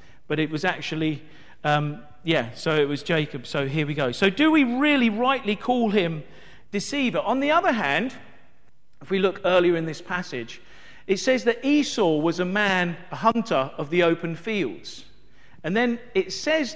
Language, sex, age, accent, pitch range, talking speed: English, male, 40-59, British, 155-225 Hz, 180 wpm